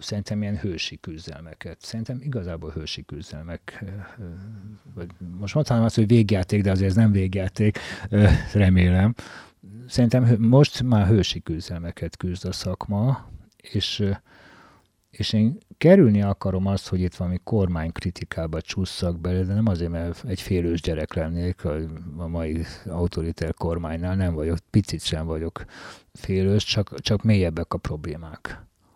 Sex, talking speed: male, 130 wpm